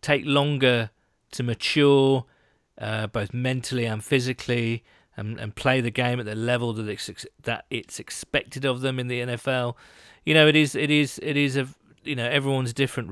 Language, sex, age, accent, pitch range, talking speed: English, male, 40-59, British, 125-155 Hz, 190 wpm